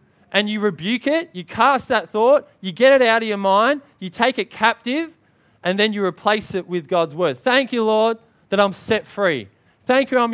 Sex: male